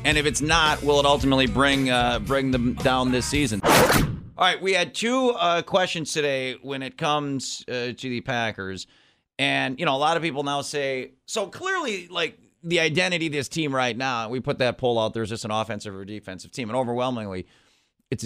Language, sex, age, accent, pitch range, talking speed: English, male, 30-49, American, 110-140 Hz, 210 wpm